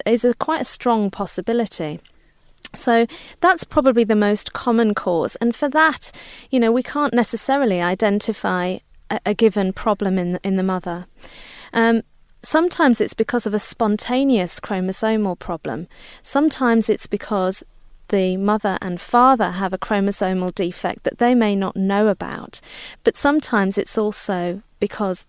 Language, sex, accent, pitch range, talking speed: English, female, British, 190-240 Hz, 145 wpm